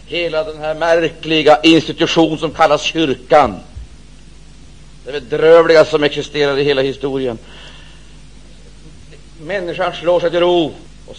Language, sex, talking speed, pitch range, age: Swedish, male, 120 wpm, 165-210 Hz, 60-79